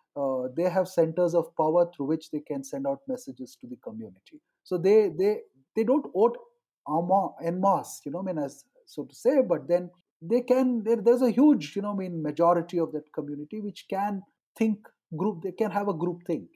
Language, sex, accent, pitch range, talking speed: English, male, Indian, 150-205 Hz, 200 wpm